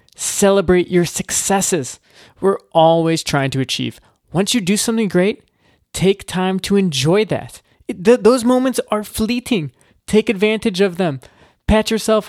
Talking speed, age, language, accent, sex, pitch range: 135 wpm, 20-39, English, American, male, 135-190 Hz